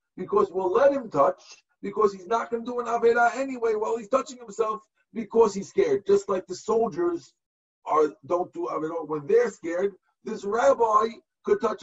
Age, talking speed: 50-69, 195 wpm